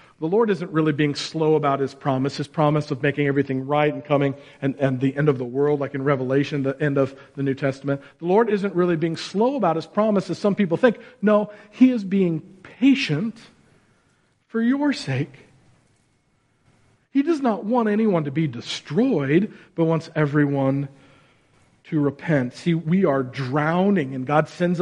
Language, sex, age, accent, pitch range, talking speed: English, male, 40-59, American, 140-185 Hz, 180 wpm